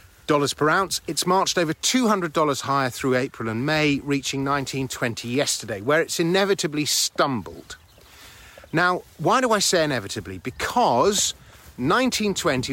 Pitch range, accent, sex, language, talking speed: 120-170 Hz, British, male, English, 125 wpm